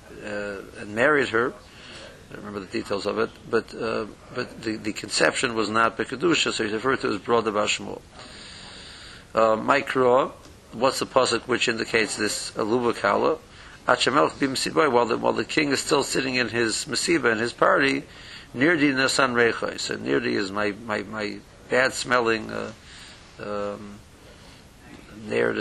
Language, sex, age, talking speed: English, male, 50-69, 140 wpm